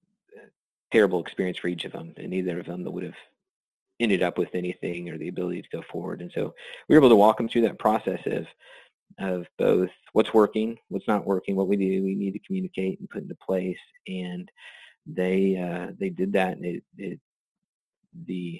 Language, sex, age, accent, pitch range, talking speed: English, male, 30-49, American, 90-100 Hz, 200 wpm